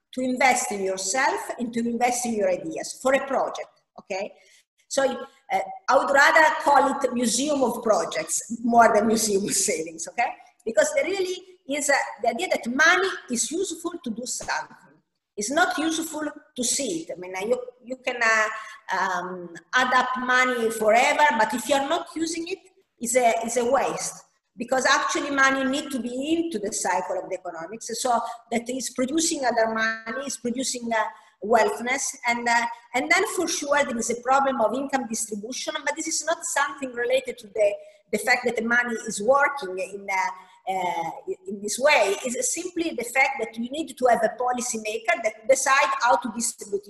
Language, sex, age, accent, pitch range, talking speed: English, female, 50-69, Italian, 225-290 Hz, 185 wpm